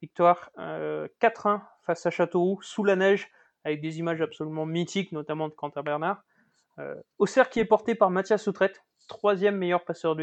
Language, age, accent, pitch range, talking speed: French, 20-39, French, 165-205 Hz, 175 wpm